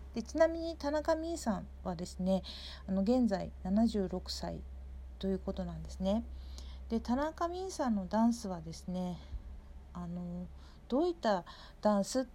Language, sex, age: Japanese, female, 50-69